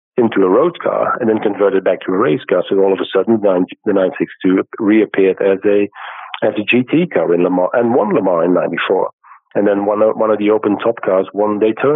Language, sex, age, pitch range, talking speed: English, male, 50-69, 95-110 Hz, 225 wpm